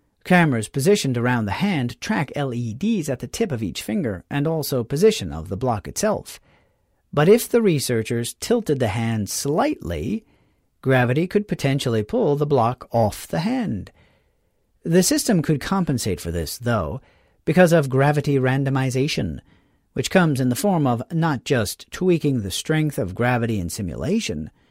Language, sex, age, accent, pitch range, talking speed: English, male, 40-59, American, 120-165 Hz, 155 wpm